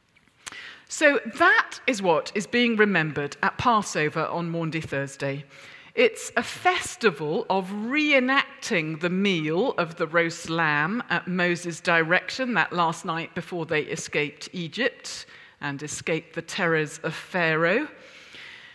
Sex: female